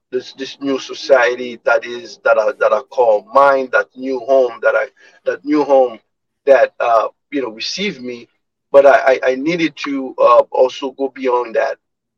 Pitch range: 130-155 Hz